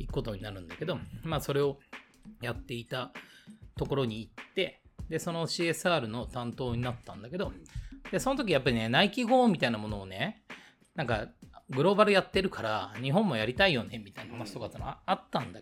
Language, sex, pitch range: Japanese, male, 120-185 Hz